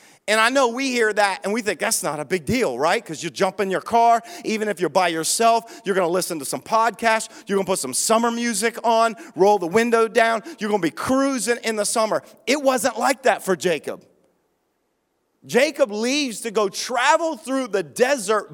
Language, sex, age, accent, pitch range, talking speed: English, male, 40-59, American, 190-250 Hz, 215 wpm